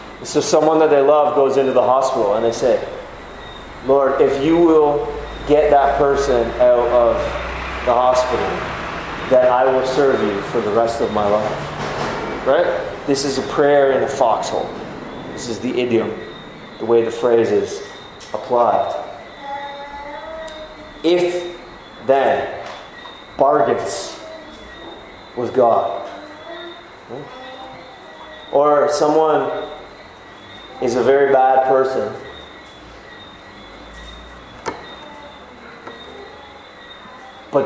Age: 30-49